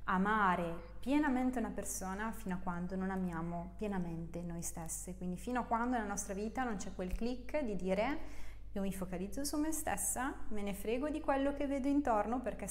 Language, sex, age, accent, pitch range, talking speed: Italian, female, 20-39, native, 195-245 Hz, 190 wpm